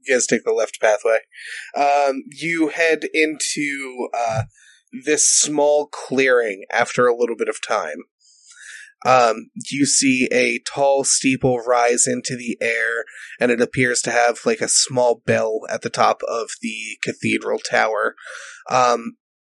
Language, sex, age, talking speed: English, male, 30-49, 145 wpm